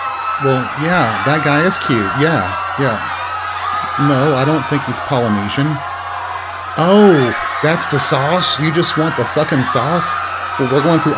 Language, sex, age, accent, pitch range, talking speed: English, male, 40-59, American, 135-170 Hz, 150 wpm